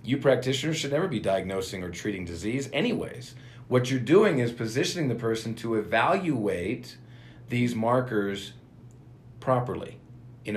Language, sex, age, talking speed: English, male, 50-69, 130 wpm